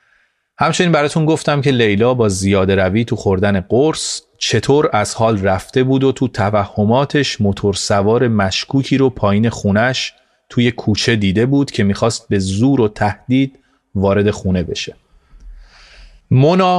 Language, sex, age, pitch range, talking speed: Persian, male, 30-49, 100-130 Hz, 145 wpm